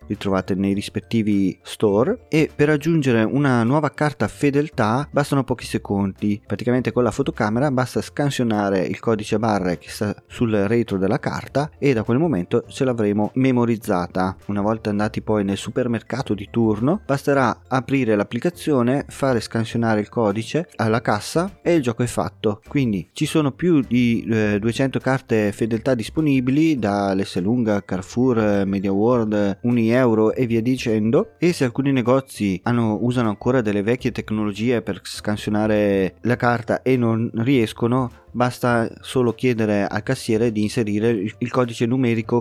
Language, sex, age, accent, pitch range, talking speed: Italian, male, 30-49, native, 105-130 Hz, 150 wpm